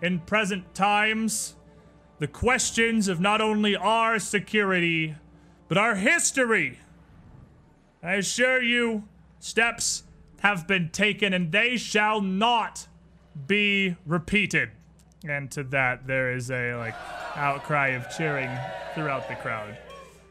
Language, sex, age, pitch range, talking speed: English, male, 30-49, 165-225 Hz, 115 wpm